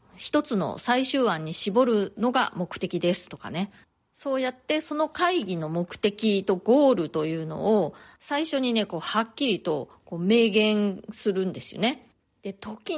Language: Japanese